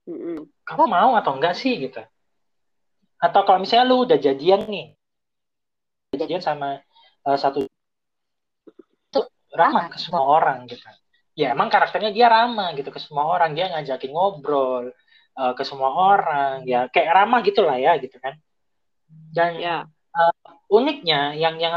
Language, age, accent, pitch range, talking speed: Indonesian, 20-39, native, 150-220 Hz, 140 wpm